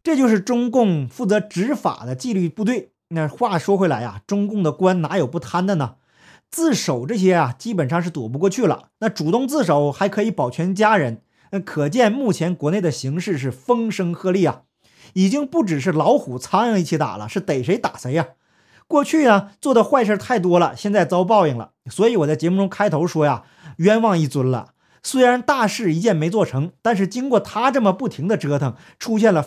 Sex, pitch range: male, 155-225 Hz